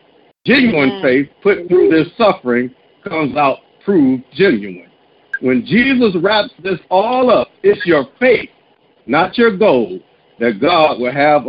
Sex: male